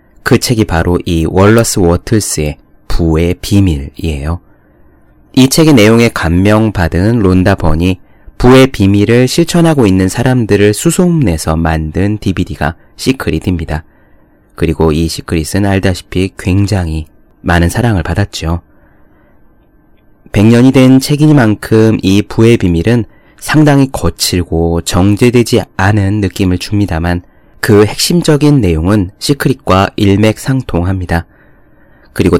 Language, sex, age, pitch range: Korean, male, 30-49, 85-110 Hz